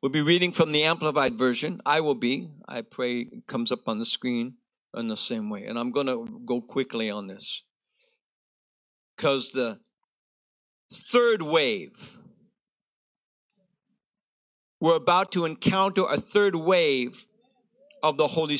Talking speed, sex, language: 140 wpm, male, English